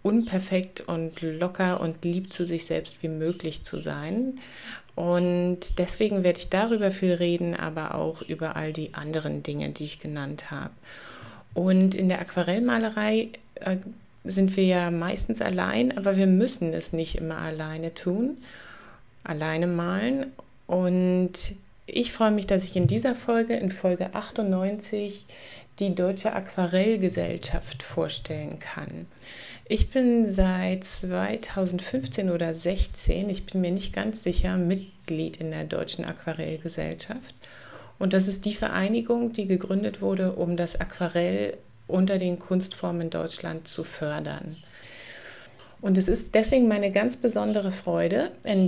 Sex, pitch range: female, 170-200 Hz